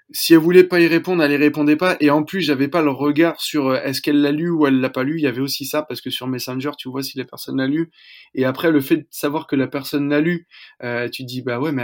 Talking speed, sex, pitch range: 310 wpm, male, 130-150 Hz